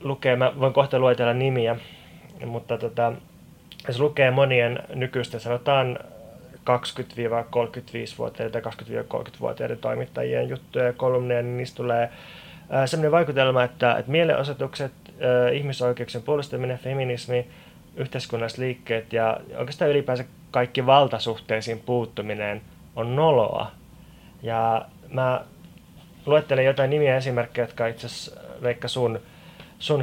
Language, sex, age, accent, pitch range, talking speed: Finnish, male, 20-39, native, 115-135 Hz, 105 wpm